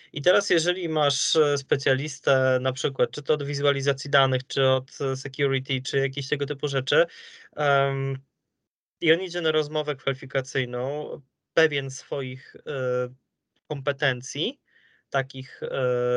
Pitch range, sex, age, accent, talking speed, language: 135-160 Hz, male, 20-39, native, 110 wpm, Polish